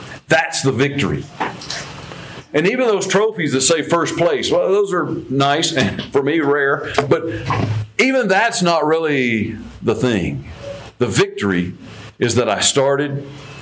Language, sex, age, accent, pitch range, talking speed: English, male, 50-69, American, 125-160 Hz, 140 wpm